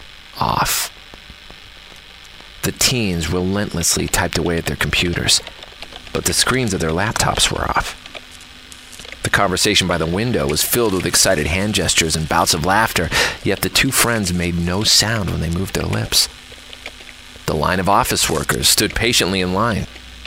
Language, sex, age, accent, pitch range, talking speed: English, male, 40-59, American, 80-100 Hz, 155 wpm